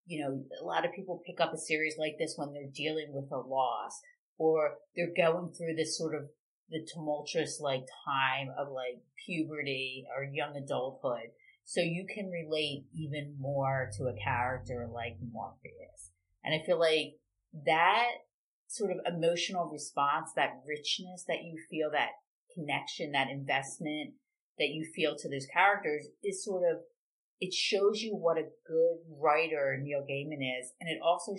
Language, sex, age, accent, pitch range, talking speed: English, female, 30-49, American, 140-175 Hz, 165 wpm